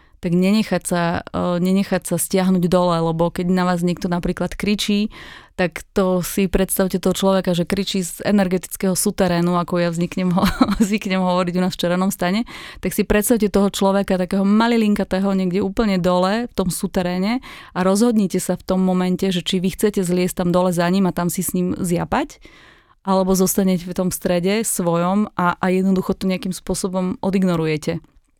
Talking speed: 170 wpm